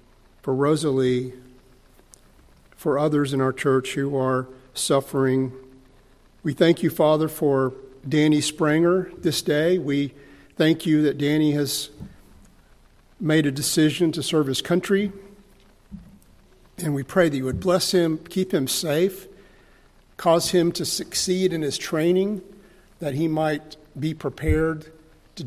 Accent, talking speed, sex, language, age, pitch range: American, 130 wpm, male, English, 50-69, 135-155 Hz